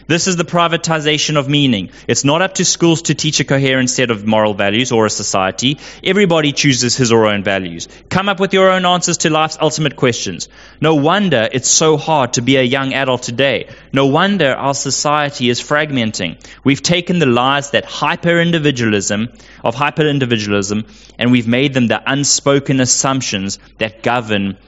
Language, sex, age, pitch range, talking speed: English, male, 20-39, 120-145 Hz, 175 wpm